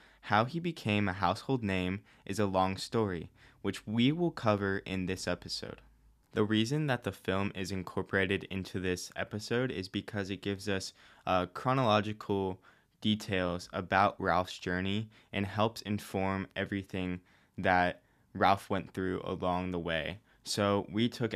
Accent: American